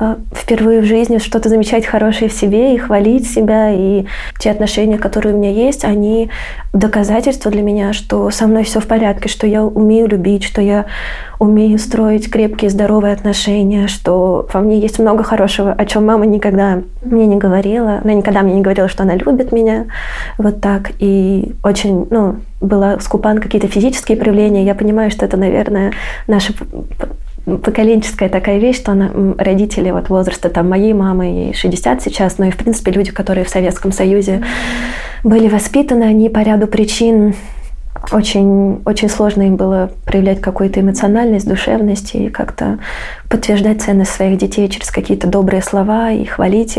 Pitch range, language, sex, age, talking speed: 195-220 Hz, Russian, female, 20-39, 160 wpm